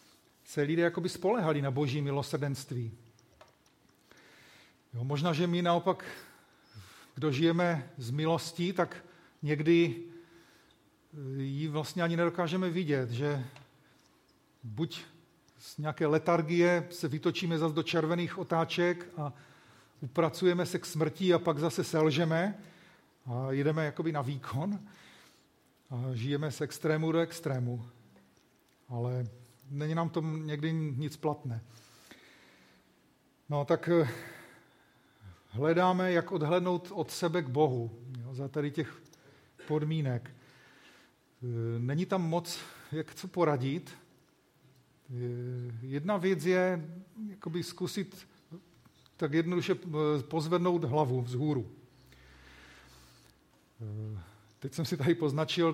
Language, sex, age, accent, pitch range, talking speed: Czech, male, 40-59, native, 135-170 Hz, 100 wpm